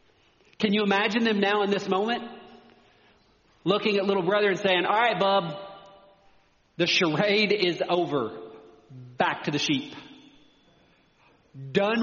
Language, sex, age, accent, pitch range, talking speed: English, male, 40-59, American, 150-200 Hz, 130 wpm